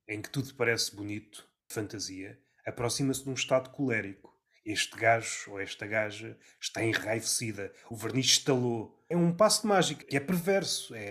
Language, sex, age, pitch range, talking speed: Portuguese, male, 30-49, 130-170 Hz, 160 wpm